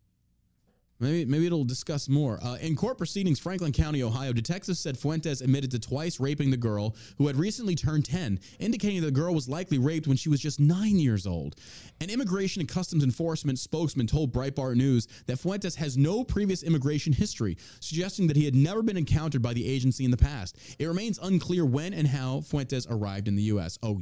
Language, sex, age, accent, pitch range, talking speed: English, male, 30-49, American, 115-155 Hz, 200 wpm